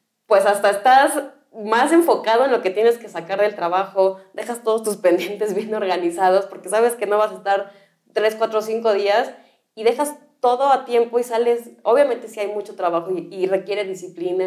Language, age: Spanish, 20-39